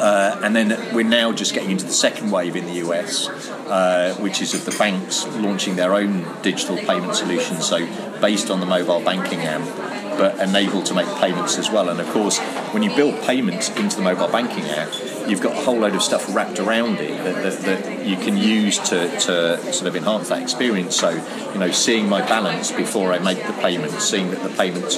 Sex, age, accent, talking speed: male, 30-49, British, 215 wpm